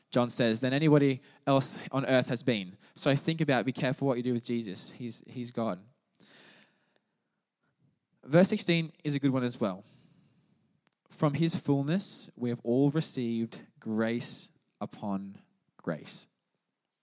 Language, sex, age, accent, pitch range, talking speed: English, male, 20-39, Australian, 125-160 Hz, 140 wpm